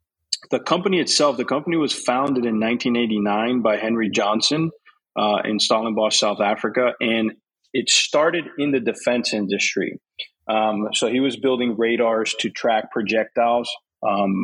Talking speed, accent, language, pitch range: 140 wpm, American, English, 110-125 Hz